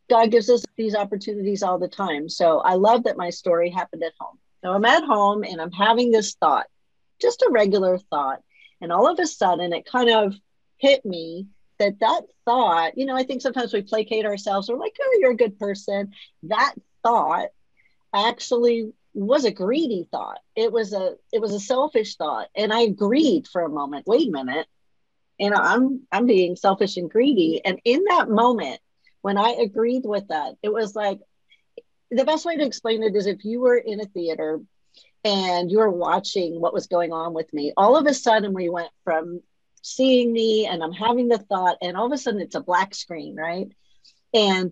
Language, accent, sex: English, American, female